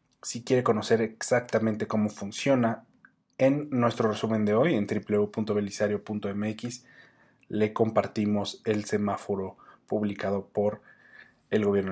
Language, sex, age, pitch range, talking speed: Spanish, male, 30-49, 105-125 Hz, 105 wpm